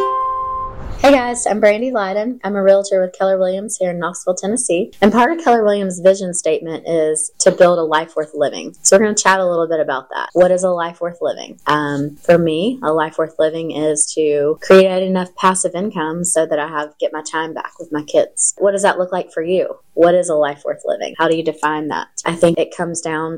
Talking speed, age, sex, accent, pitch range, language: 235 wpm, 20-39, female, American, 155-190 Hz, English